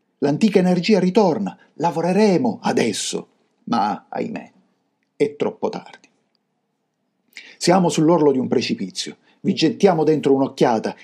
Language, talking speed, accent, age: Italian, 105 wpm, native, 50-69